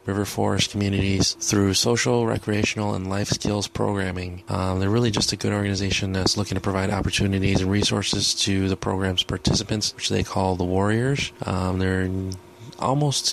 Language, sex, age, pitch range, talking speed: English, male, 20-39, 95-105 Hz, 160 wpm